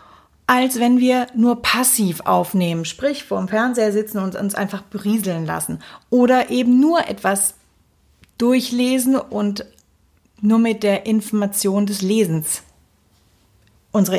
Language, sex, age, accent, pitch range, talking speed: German, female, 30-49, German, 200-260 Hz, 125 wpm